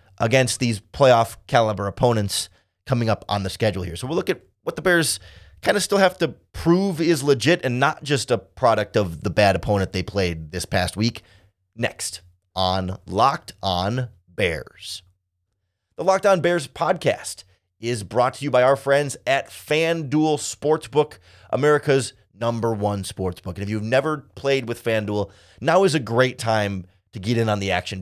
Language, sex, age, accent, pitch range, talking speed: English, male, 30-49, American, 100-145 Hz, 175 wpm